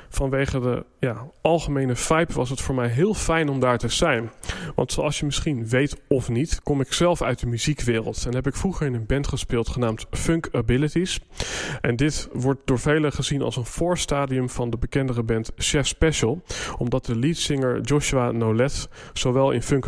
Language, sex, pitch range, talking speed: Dutch, male, 120-150 Hz, 190 wpm